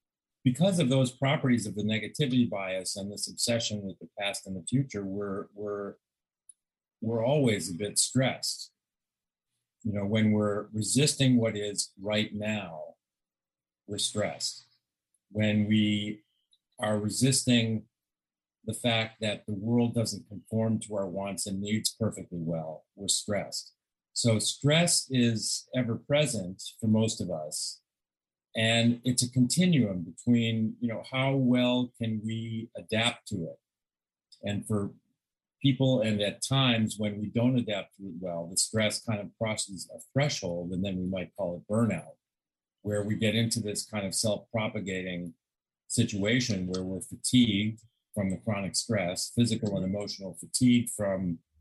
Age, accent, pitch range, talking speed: 50-69, American, 95-120 Hz, 145 wpm